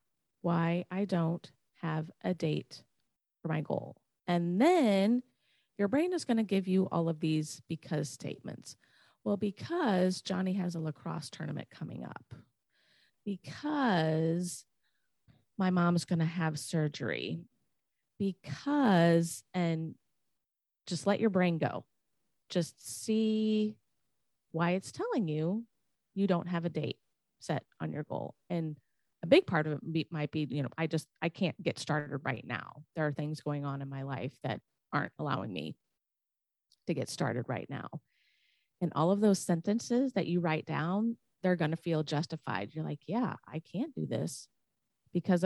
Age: 30-49